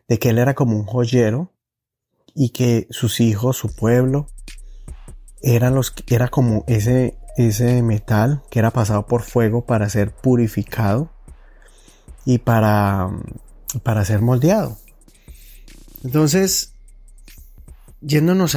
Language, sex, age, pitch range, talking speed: Spanish, male, 30-49, 110-130 Hz, 105 wpm